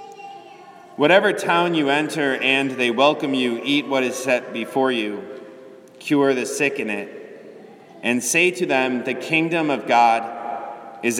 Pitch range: 120-155 Hz